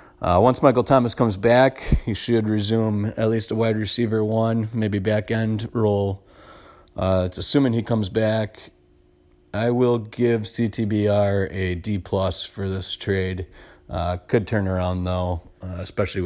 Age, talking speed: 30-49, 150 wpm